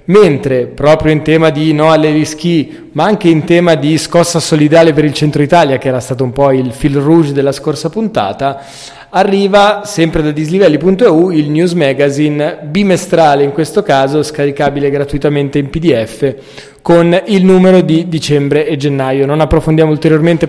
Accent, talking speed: native, 160 wpm